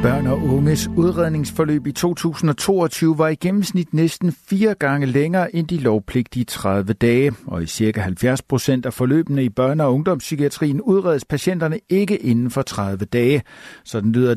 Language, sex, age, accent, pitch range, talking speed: Danish, male, 60-79, native, 120-155 Hz, 160 wpm